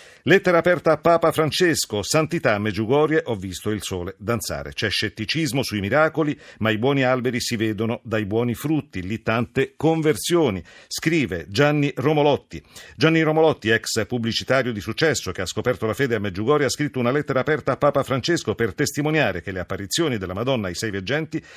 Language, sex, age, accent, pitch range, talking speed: Italian, male, 50-69, native, 110-150 Hz, 175 wpm